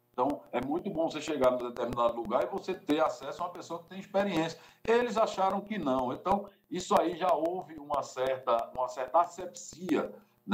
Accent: Brazilian